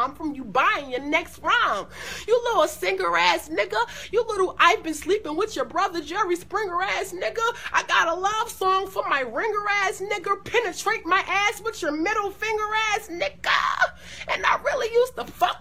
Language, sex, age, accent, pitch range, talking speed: English, female, 30-49, American, 295-400 Hz, 190 wpm